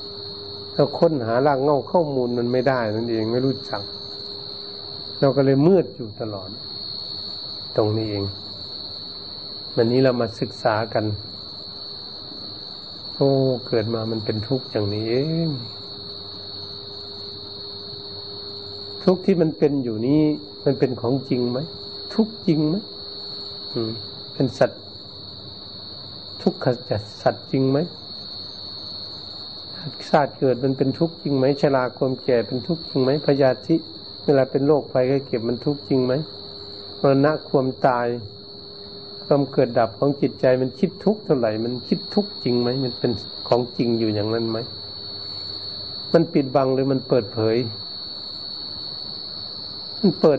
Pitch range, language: 100-135 Hz, Thai